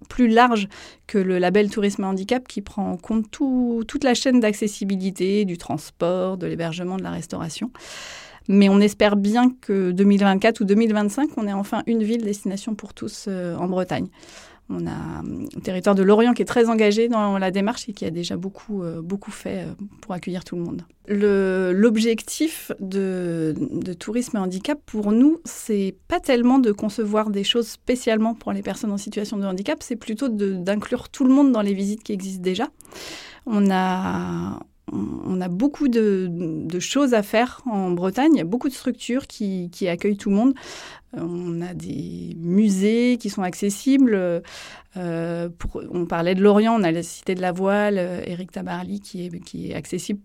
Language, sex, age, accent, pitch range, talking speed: French, female, 30-49, French, 180-220 Hz, 185 wpm